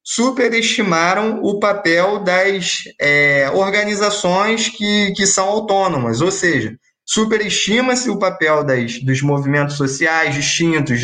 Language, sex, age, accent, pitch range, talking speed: Portuguese, male, 20-39, Brazilian, 135-190 Hz, 100 wpm